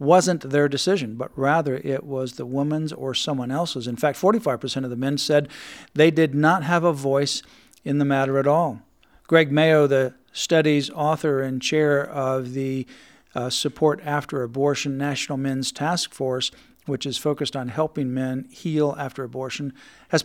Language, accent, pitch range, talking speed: English, American, 140-165 Hz, 170 wpm